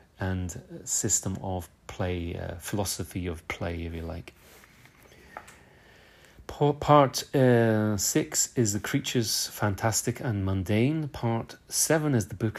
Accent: British